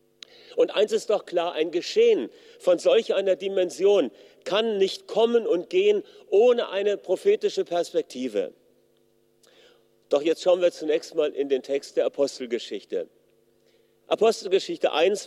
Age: 40-59